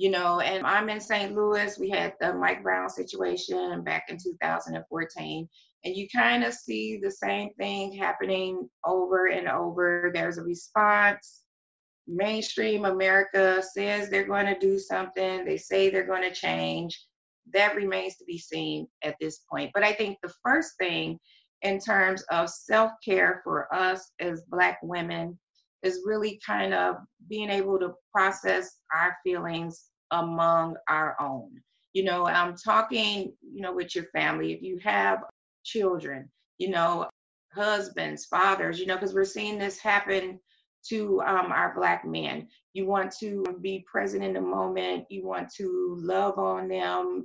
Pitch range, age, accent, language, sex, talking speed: 165-200 Hz, 30-49, American, English, female, 160 wpm